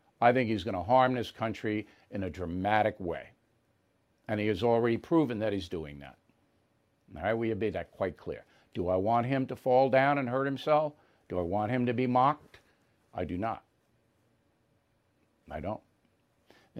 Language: English